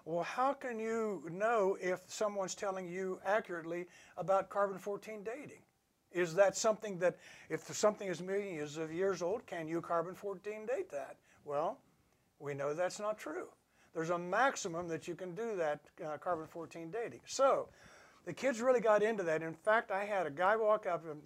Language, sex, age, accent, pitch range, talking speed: English, male, 60-79, American, 165-215 Hz, 175 wpm